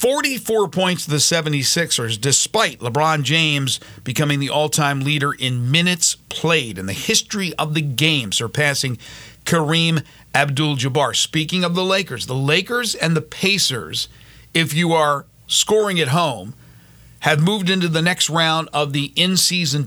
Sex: male